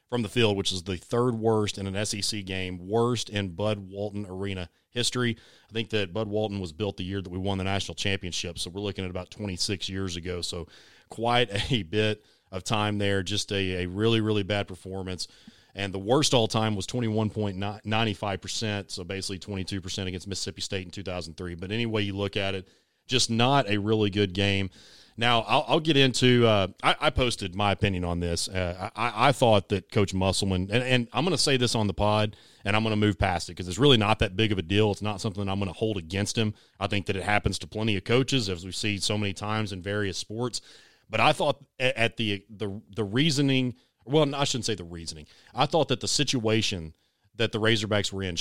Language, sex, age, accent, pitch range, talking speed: English, male, 30-49, American, 95-115 Hz, 220 wpm